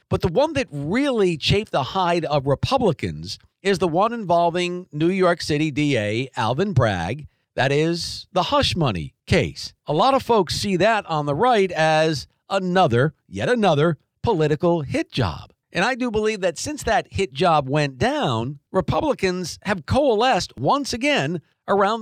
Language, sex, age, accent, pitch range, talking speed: English, male, 50-69, American, 145-195 Hz, 160 wpm